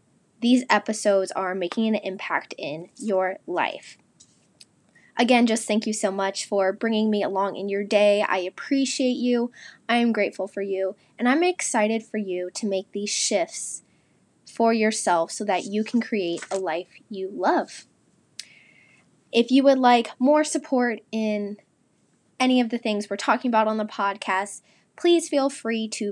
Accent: American